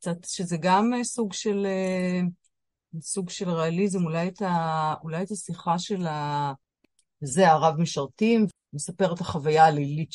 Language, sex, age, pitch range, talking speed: Hebrew, female, 40-59, 170-215 Hz, 135 wpm